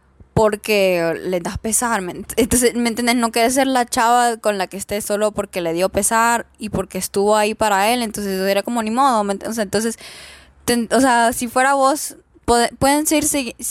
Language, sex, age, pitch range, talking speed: Spanish, female, 10-29, 200-240 Hz, 195 wpm